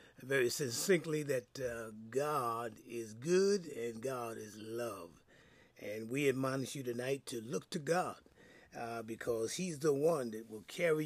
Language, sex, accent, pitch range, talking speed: English, male, American, 130-180 Hz, 150 wpm